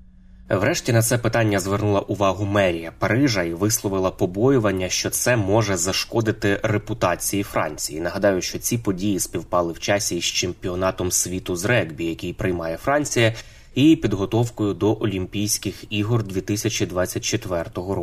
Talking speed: 125 wpm